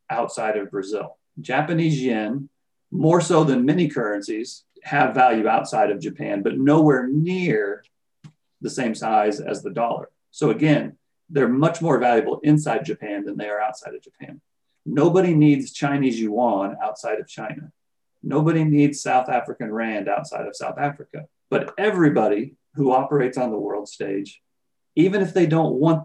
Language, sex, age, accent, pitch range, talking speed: English, male, 40-59, American, 125-160 Hz, 155 wpm